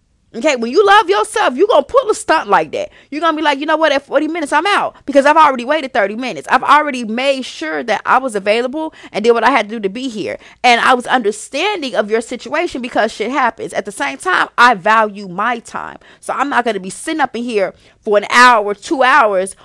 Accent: American